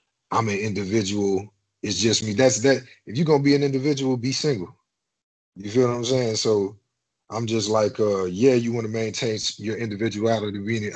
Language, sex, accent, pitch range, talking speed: English, male, American, 100-120 Hz, 185 wpm